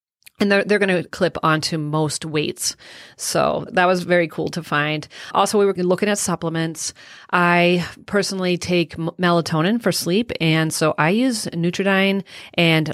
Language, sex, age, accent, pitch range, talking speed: English, female, 40-59, American, 155-185 Hz, 160 wpm